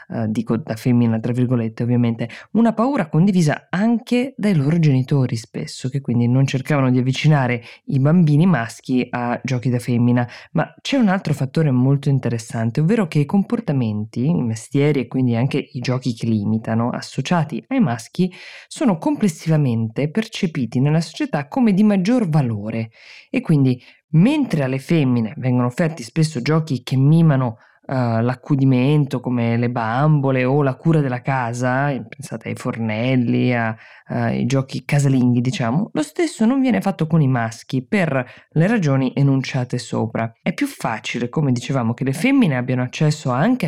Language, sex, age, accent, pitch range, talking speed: Italian, female, 20-39, native, 125-165 Hz, 150 wpm